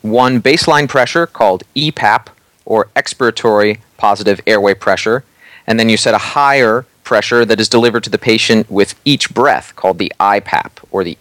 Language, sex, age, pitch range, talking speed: English, male, 30-49, 105-125 Hz, 165 wpm